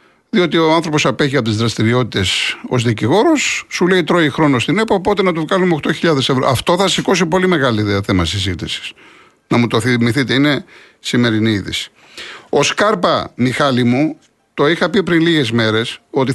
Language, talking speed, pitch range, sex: Greek, 170 wpm, 125-175 Hz, male